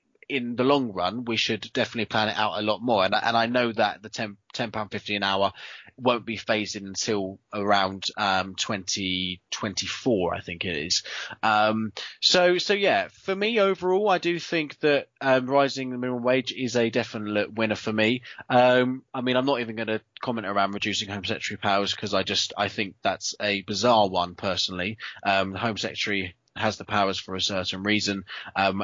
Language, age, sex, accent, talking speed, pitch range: English, 20-39, male, British, 200 wpm, 100-130 Hz